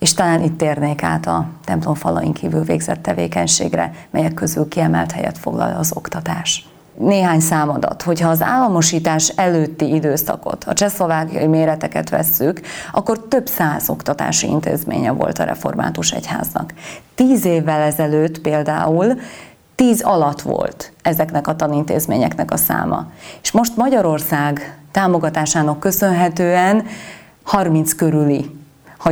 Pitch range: 150-185 Hz